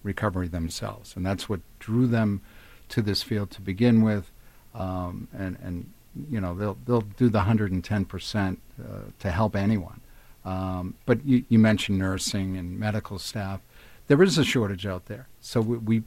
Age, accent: 50-69, American